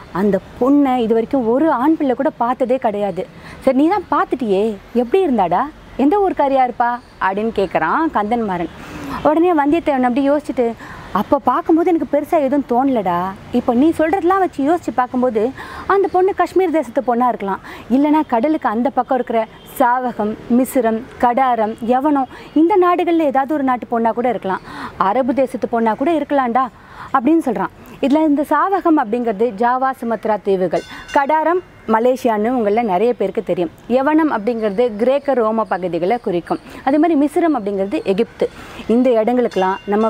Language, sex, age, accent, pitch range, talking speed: Tamil, female, 30-49, native, 225-295 Hz, 145 wpm